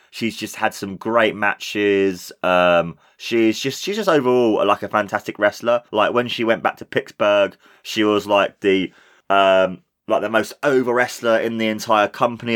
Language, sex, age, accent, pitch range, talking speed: English, male, 20-39, British, 100-115 Hz, 175 wpm